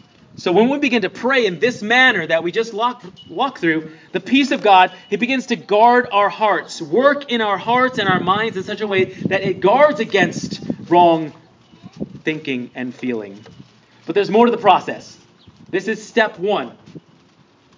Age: 30-49